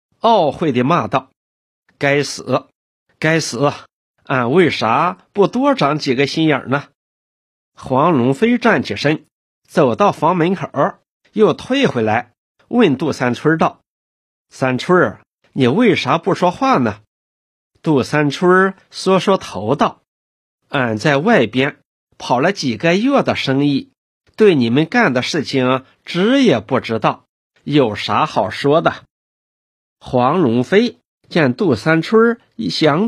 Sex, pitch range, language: male, 125-190 Hz, Chinese